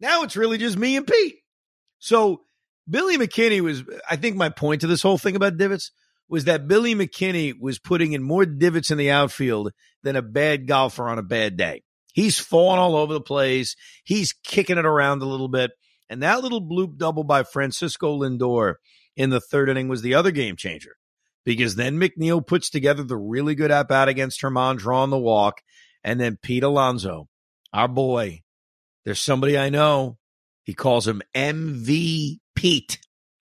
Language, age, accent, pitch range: English, 50-69, American, 130-175 Hz